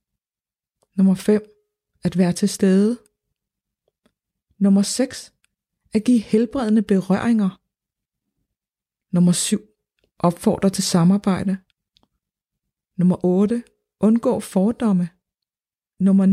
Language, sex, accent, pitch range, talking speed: Danish, female, native, 185-220 Hz, 80 wpm